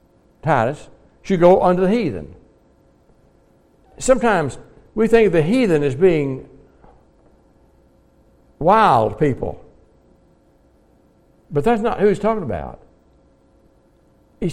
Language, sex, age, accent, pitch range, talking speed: English, male, 60-79, American, 110-180 Hz, 100 wpm